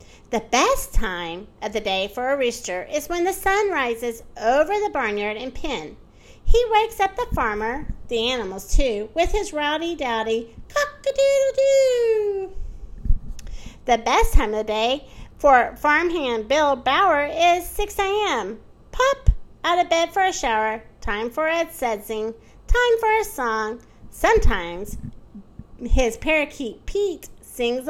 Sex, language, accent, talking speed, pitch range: female, English, American, 140 wpm, 230-355 Hz